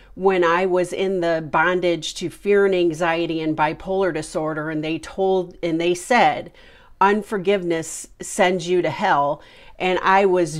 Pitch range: 165-190 Hz